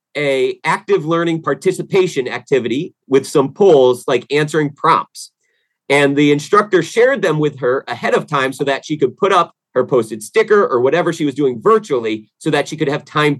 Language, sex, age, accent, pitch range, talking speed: English, male, 30-49, American, 135-185 Hz, 190 wpm